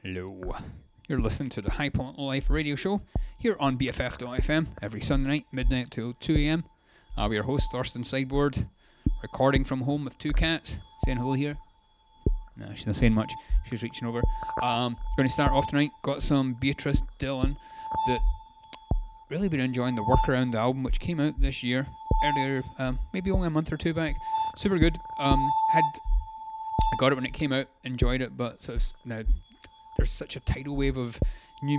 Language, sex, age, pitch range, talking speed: English, male, 30-49, 125-150 Hz, 185 wpm